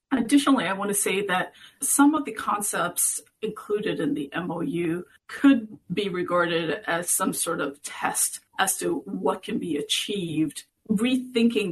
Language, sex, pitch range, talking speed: English, female, 180-260 Hz, 150 wpm